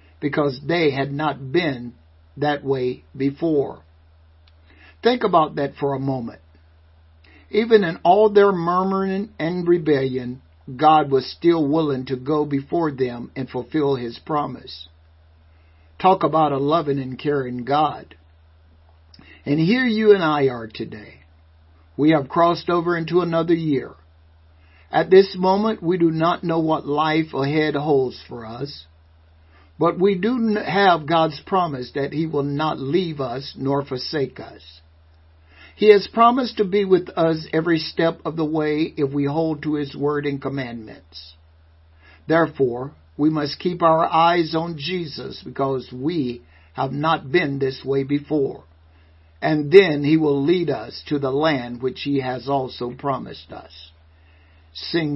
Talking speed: 145 wpm